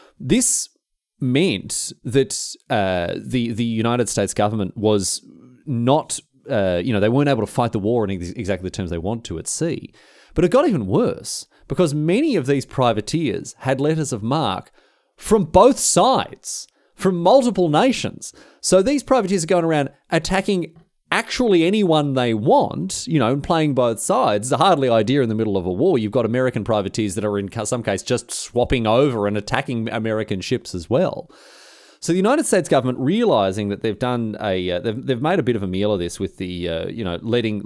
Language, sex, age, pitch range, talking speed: English, male, 30-49, 100-155 Hz, 195 wpm